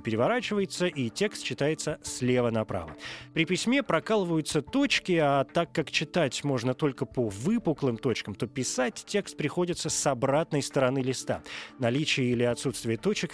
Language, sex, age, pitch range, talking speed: Russian, male, 20-39, 120-165 Hz, 140 wpm